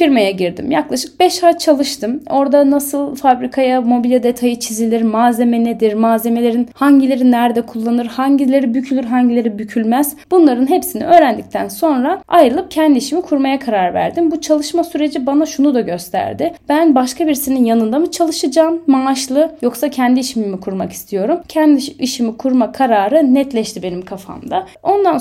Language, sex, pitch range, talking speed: Turkish, female, 230-285 Hz, 145 wpm